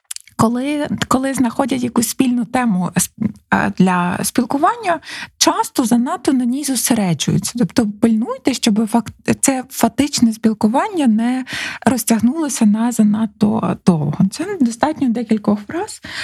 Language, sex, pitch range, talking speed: Ukrainian, female, 180-250 Hz, 105 wpm